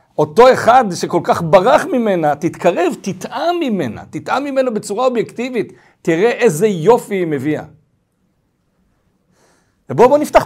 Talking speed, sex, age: 120 wpm, male, 50-69